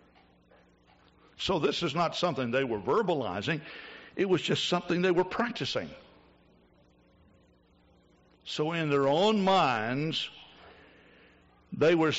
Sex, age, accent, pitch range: male, 60-79, American, 110-175 Hz